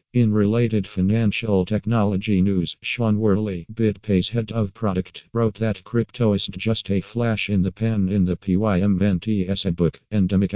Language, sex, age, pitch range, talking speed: Malay, male, 50-69, 95-110 Hz, 155 wpm